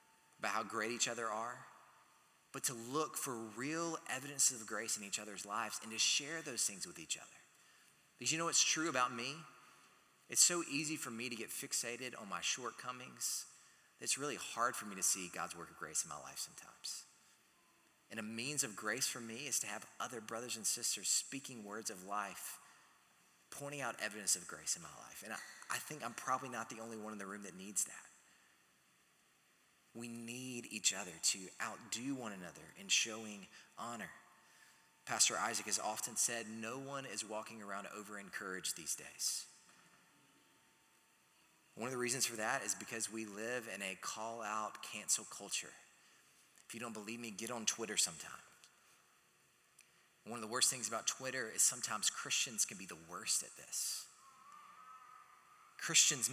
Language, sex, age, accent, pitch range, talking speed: English, male, 30-49, American, 110-135 Hz, 180 wpm